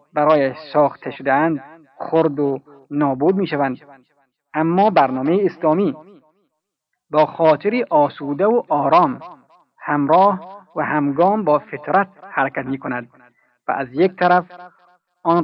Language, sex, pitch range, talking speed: Persian, male, 140-185 Hz, 115 wpm